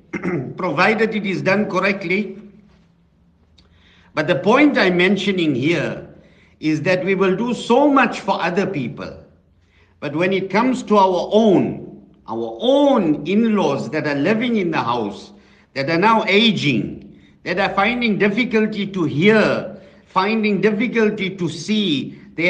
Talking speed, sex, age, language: 140 wpm, male, 60-79, English